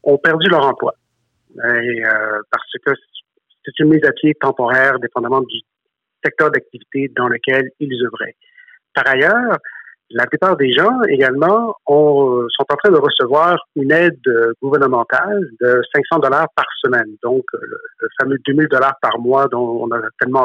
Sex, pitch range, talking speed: male, 130-215 Hz, 160 wpm